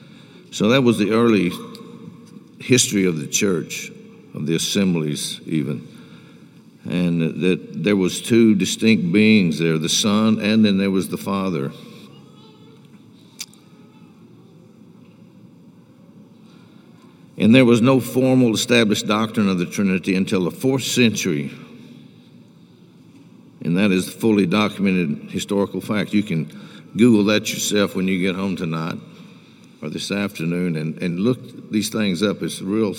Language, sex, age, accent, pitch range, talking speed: English, male, 60-79, American, 90-110 Hz, 130 wpm